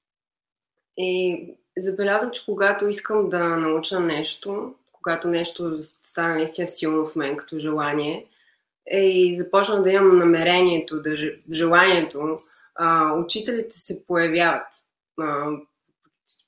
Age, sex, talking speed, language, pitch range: 20-39, female, 110 wpm, Bulgarian, 155-185 Hz